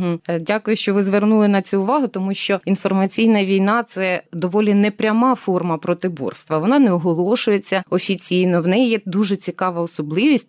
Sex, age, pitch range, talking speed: female, 20-39, 175-220 Hz, 155 wpm